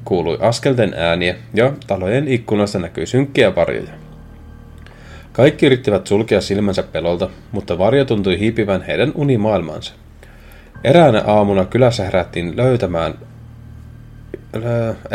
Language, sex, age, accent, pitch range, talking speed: Finnish, male, 30-49, native, 95-130 Hz, 100 wpm